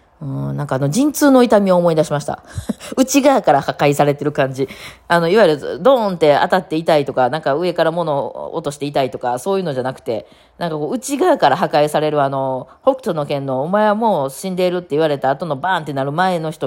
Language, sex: Japanese, female